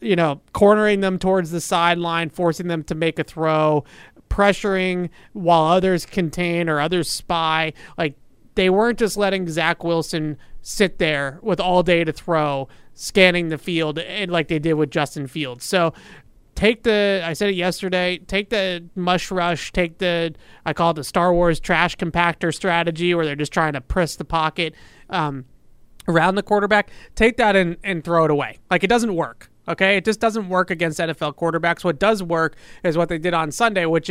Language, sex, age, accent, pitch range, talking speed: English, male, 30-49, American, 155-185 Hz, 185 wpm